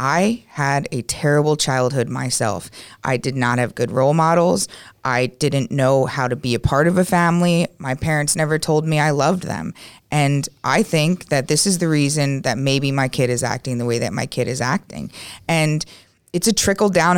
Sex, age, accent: female, 30-49, American